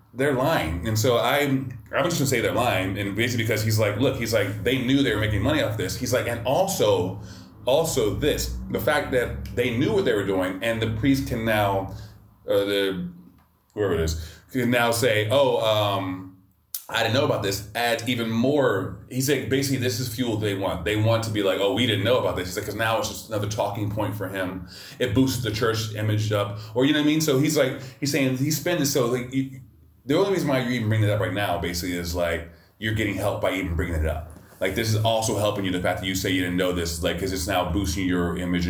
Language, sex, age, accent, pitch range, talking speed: English, male, 30-49, American, 95-115 Hz, 250 wpm